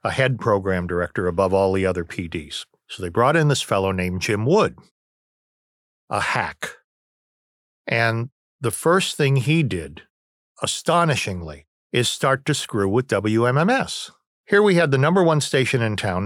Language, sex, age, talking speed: English, male, 50-69, 155 wpm